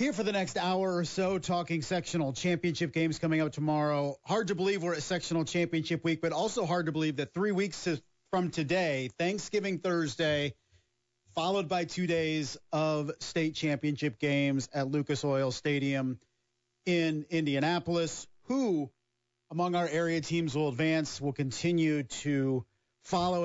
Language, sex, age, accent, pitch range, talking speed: English, male, 40-59, American, 135-175 Hz, 150 wpm